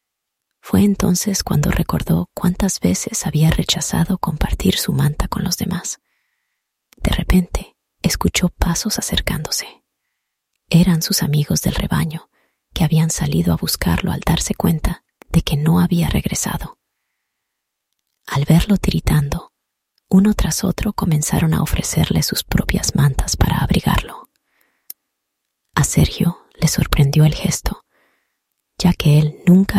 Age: 30-49